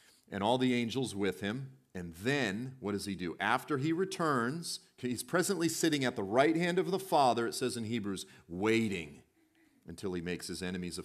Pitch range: 90-135 Hz